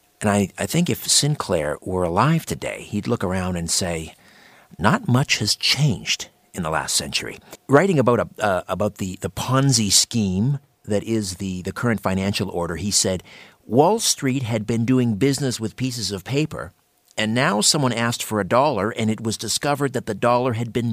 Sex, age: male, 50-69